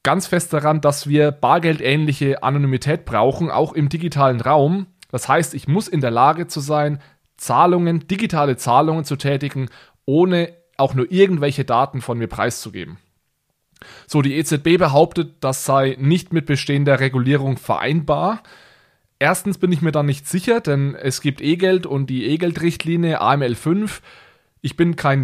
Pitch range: 135-165 Hz